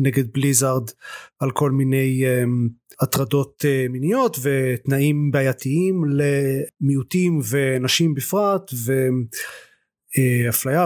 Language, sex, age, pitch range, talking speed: Hebrew, male, 30-49, 125-150 Hz, 70 wpm